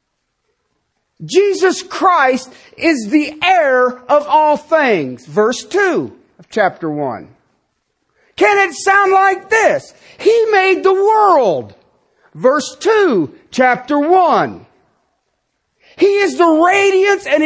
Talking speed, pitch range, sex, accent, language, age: 105 wpm, 265-375 Hz, male, American, English, 50-69